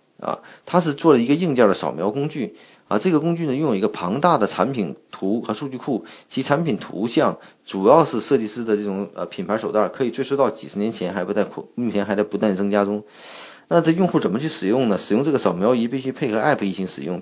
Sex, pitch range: male, 105-140 Hz